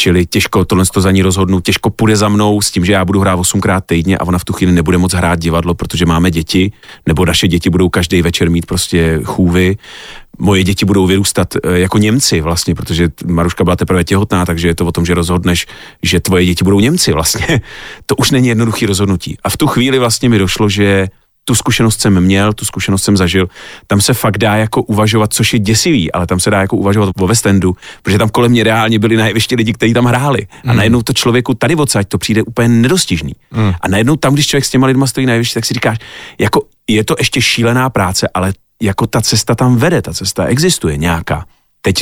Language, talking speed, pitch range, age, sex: Slovak, 220 wpm, 95-115 Hz, 40-59, male